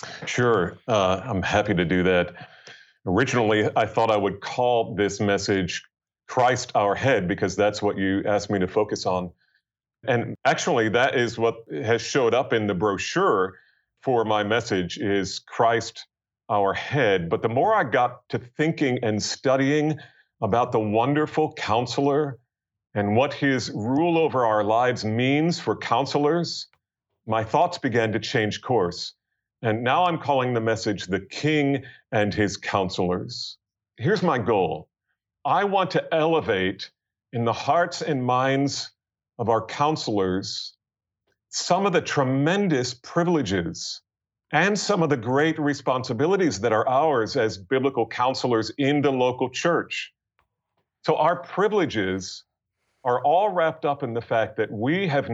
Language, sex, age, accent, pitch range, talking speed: English, male, 40-59, American, 105-140 Hz, 145 wpm